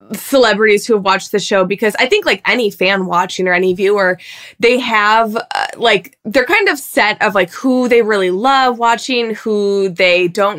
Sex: female